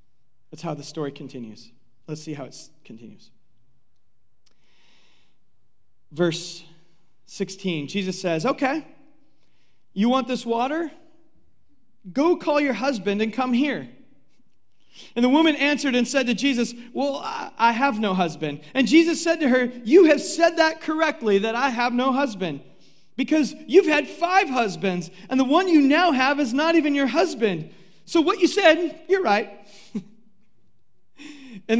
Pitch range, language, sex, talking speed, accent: 195-290 Hz, English, male, 145 wpm, American